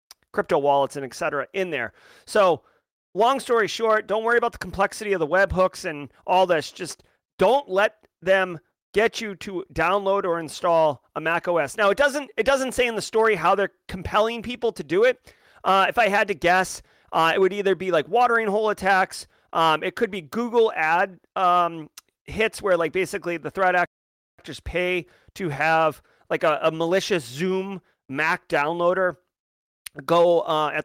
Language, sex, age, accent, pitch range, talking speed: English, male, 30-49, American, 165-205 Hz, 185 wpm